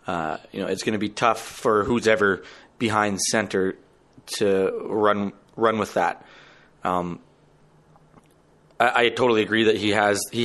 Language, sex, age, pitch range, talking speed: English, male, 30-49, 100-115 Hz, 155 wpm